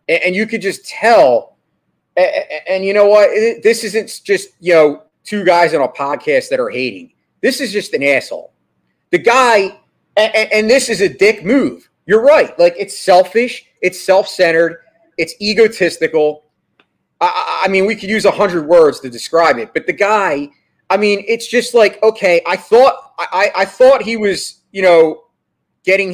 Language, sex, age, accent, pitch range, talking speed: English, male, 30-49, American, 155-215 Hz, 170 wpm